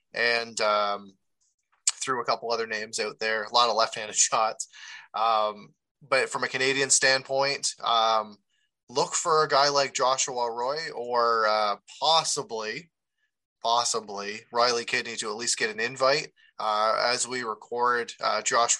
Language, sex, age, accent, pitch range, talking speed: English, male, 20-39, American, 110-135 Hz, 145 wpm